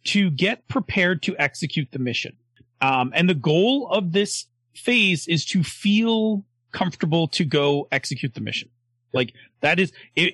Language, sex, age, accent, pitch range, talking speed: English, male, 30-49, American, 125-175 Hz, 155 wpm